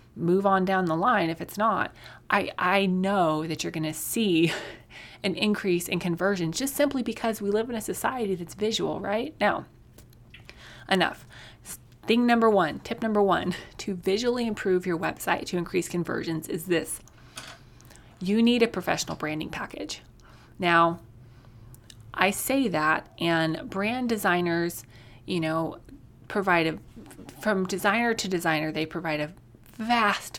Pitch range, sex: 160-220 Hz, female